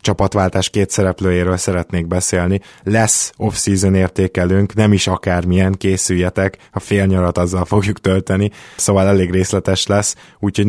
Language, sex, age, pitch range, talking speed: Hungarian, male, 20-39, 95-110 Hz, 130 wpm